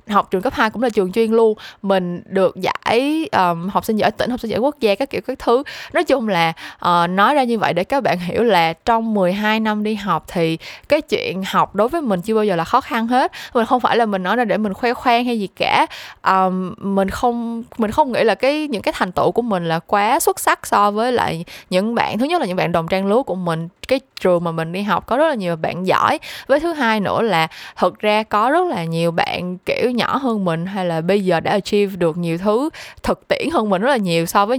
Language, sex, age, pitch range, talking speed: Vietnamese, female, 20-39, 180-240 Hz, 260 wpm